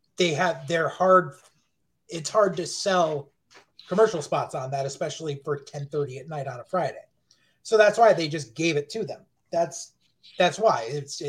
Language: English